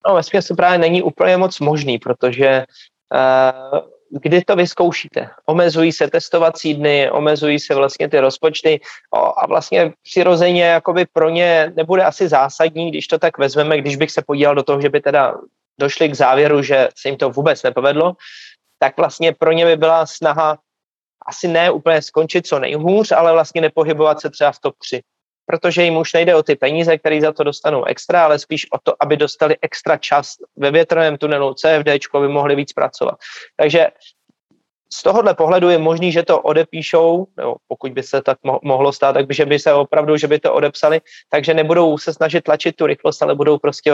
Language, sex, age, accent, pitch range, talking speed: Czech, male, 20-39, native, 145-165 Hz, 185 wpm